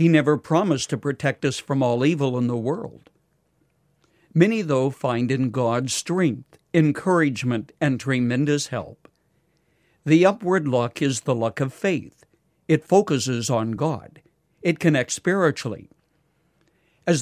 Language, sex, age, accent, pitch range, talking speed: English, male, 60-79, American, 130-170 Hz, 130 wpm